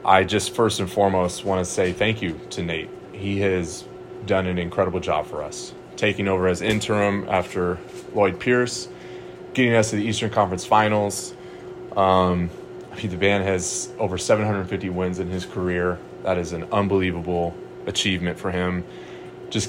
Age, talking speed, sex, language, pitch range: 20-39, 160 wpm, male, English, 90-105 Hz